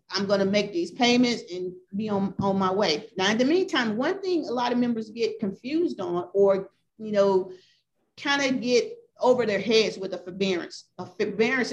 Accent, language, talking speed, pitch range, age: American, English, 200 wpm, 200-245 Hz, 40-59